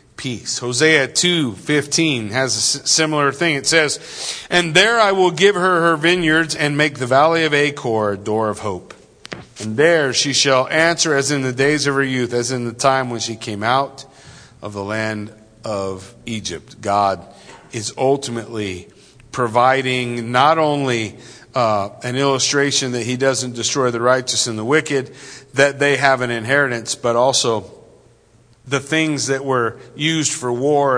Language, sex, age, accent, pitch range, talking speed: English, male, 40-59, American, 115-150 Hz, 165 wpm